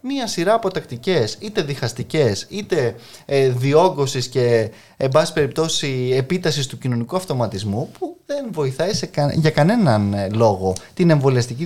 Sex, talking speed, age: male, 145 wpm, 20-39